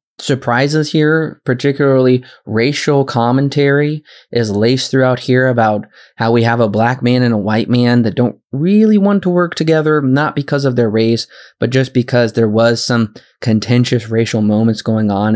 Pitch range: 110-135 Hz